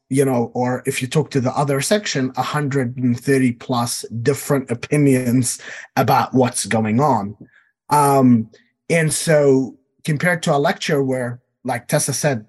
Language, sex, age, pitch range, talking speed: English, male, 30-49, 120-150 Hz, 140 wpm